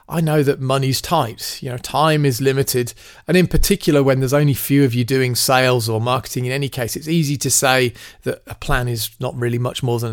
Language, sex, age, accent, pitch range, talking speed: English, male, 30-49, British, 120-145 Hz, 230 wpm